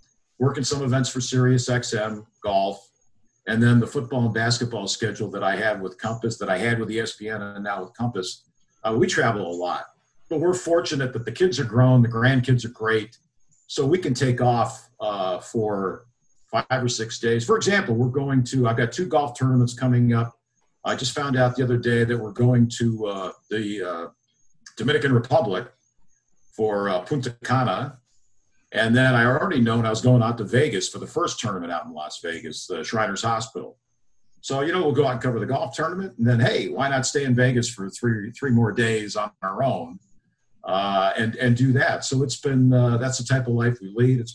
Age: 50-69